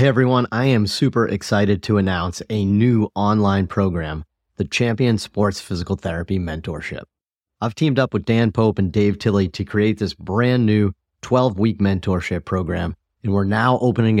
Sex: male